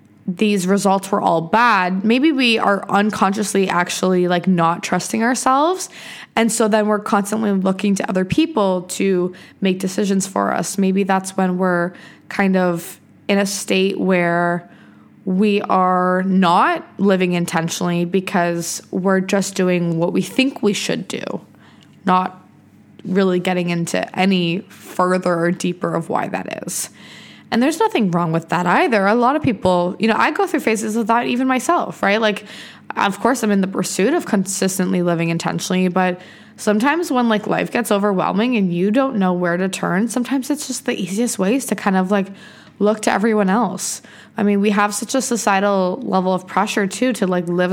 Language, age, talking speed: English, 20-39, 175 wpm